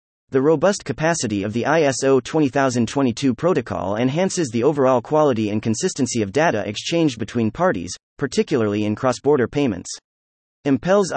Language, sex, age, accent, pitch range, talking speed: English, male, 30-49, American, 110-155 Hz, 130 wpm